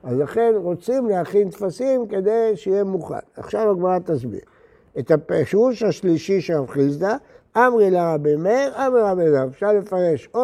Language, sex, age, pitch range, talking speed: Hebrew, male, 60-79, 175-230 Hz, 150 wpm